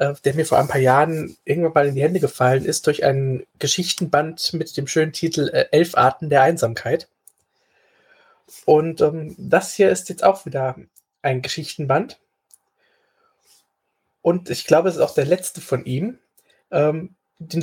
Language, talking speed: German, 155 wpm